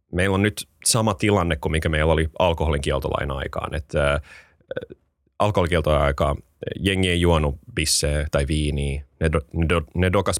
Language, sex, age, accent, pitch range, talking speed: Finnish, male, 30-49, native, 75-90 Hz, 165 wpm